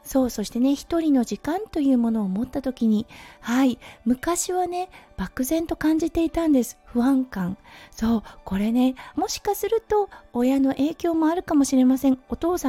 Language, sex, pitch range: Japanese, female, 215-310 Hz